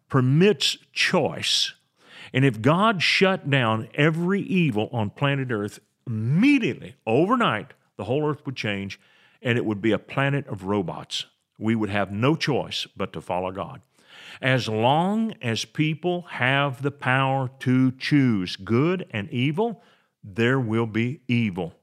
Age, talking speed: 50-69, 145 wpm